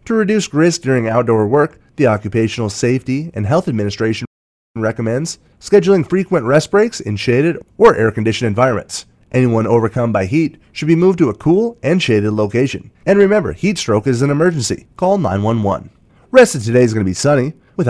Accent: American